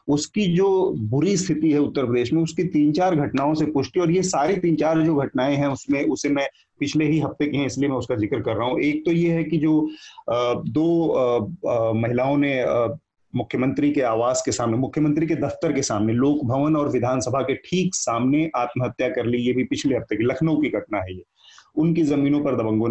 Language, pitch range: Hindi, 120-155 Hz